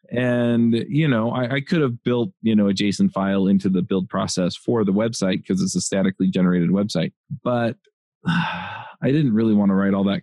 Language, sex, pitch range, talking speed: English, male, 100-135 Hz, 210 wpm